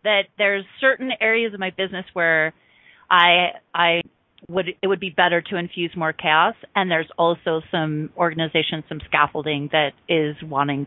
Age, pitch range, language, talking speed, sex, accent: 30-49, 150-190 Hz, English, 160 wpm, female, American